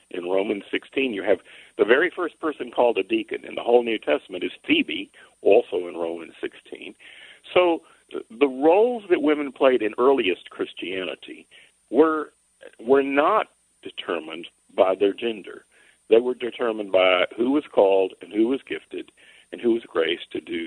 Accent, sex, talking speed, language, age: American, male, 165 wpm, English, 50-69